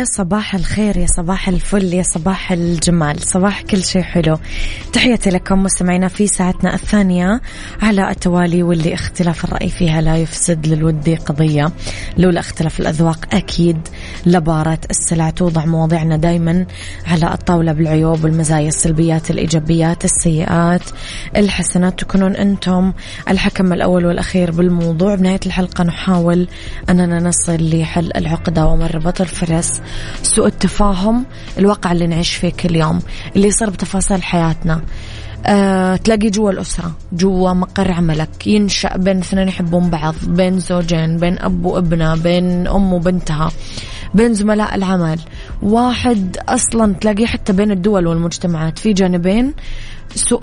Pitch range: 165-195 Hz